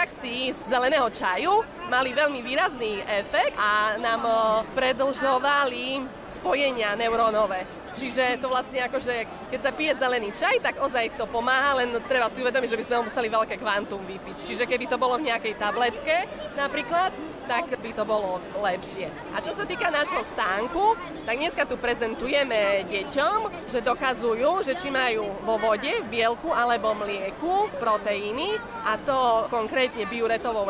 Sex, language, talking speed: female, Slovak, 150 wpm